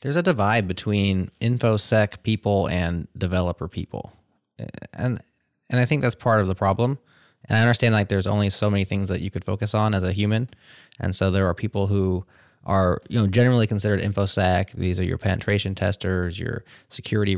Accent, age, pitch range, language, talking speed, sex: American, 20-39, 95-115 Hz, English, 185 wpm, male